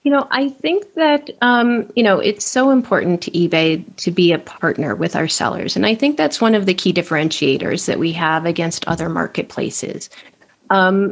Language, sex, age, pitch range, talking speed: English, female, 40-59, 175-220 Hz, 195 wpm